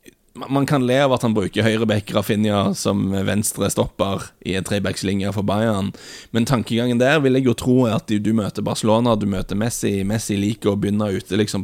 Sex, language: male, English